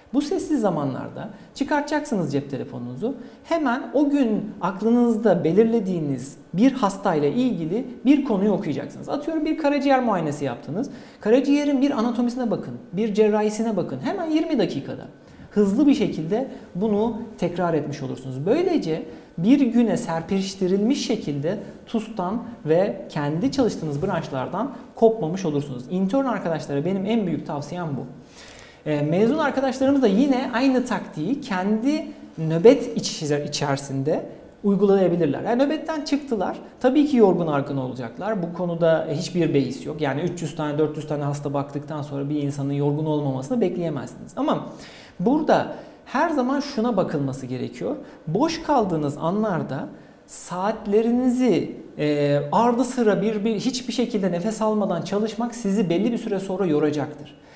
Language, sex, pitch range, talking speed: Turkish, male, 155-245 Hz, 125 wpm